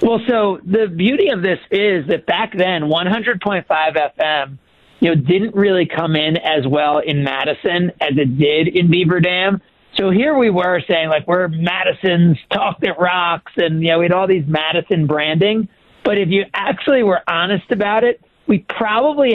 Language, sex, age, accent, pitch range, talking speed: English, male, 50-69, American, 155-190 Hz, 180 wpm